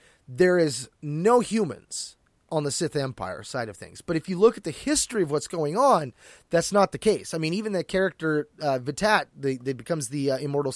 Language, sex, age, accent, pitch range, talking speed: English, male, 30-49, American, 150-195 Hz, 210 wpm